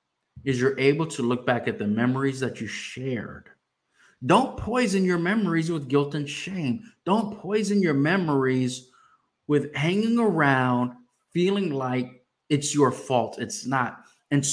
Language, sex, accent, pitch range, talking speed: English, male, American, 120-165 Hz, 145 wpm